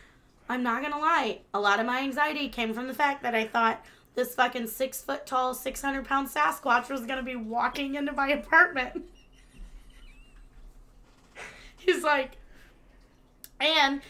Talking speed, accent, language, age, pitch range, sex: 155 wpm, American, English, 20-39, 255-315 Hz, female